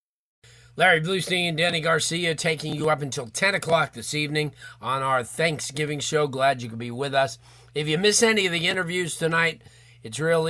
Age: 40-59